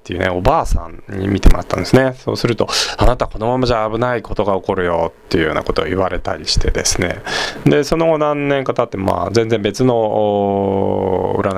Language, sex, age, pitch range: Japanese, male, 20-39, 100-140 Hz